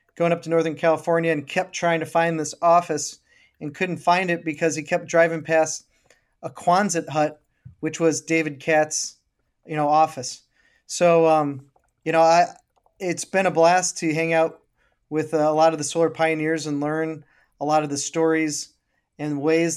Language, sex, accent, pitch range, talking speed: English, male, American, 150-165 Hz, 180 wpm